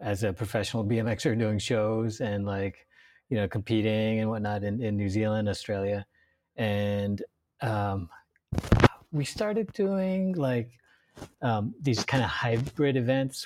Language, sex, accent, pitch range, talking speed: English, male, American, 105-130 Hz, 135 wpm